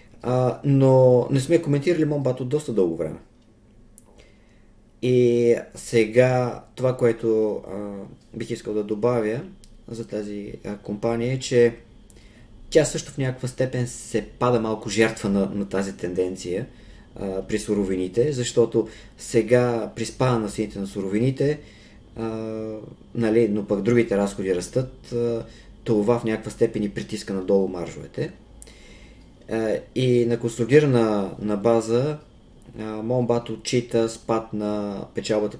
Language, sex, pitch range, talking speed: Bulgarian, male, 105-120 Hz, 125 wpm